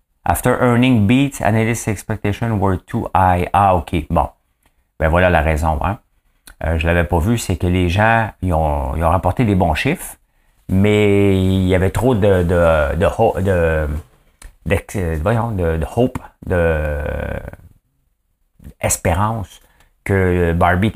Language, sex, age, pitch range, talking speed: English, male, 50-69, 80-105 Hz, 155 wpm